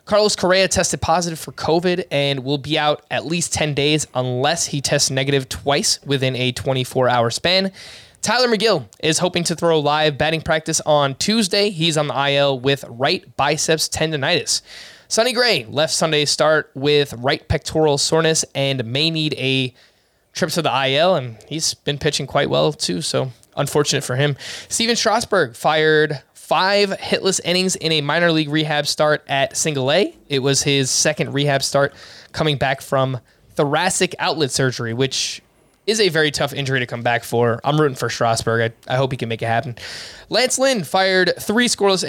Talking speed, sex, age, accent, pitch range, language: 175 wpm, male, 20-39, American, 135-170 Hz, English